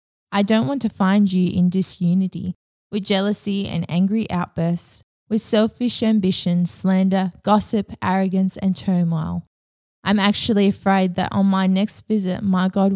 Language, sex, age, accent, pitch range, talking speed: English, female, 20-39, Australian, 175-210 Hz, 145 wpm